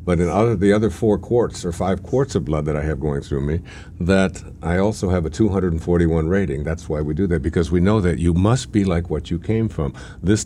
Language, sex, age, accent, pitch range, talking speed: English, male, 60-79, American, 85-110 Hz, 240 wpm